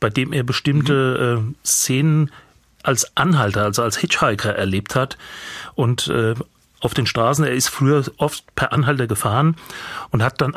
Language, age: German, 30-49